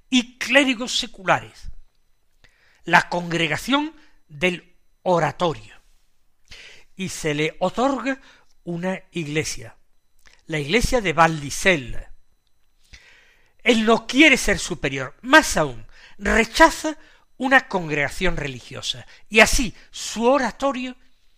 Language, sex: Spanish, male